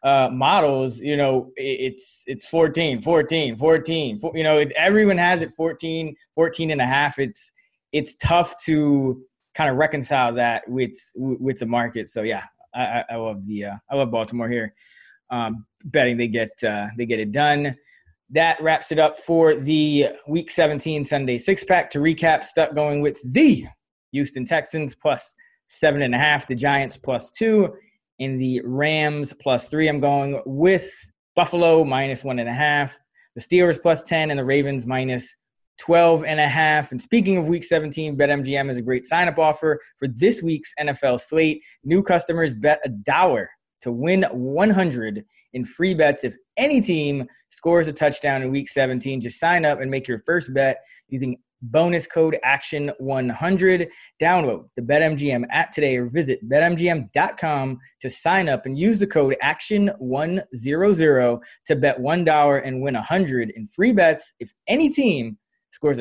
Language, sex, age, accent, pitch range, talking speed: English, male, 20-39, American, 130-165 Hz, 165 wpm